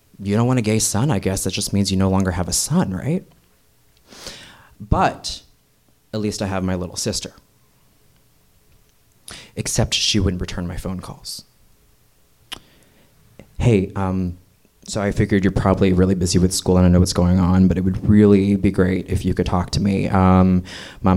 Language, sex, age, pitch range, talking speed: English, male, 20-39, 90-100 Hz, 180 wpm